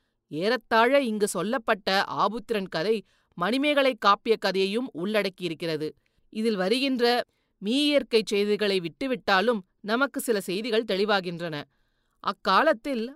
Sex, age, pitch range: female, 30-49, 195-255 Hz